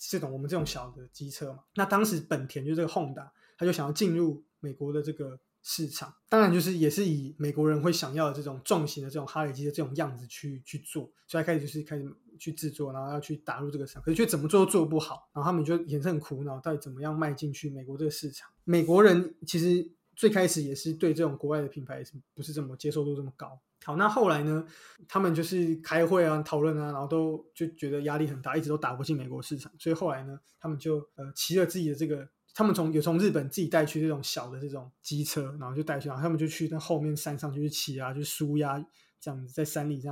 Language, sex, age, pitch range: Chinese, male, 20-39, 145-170 Hz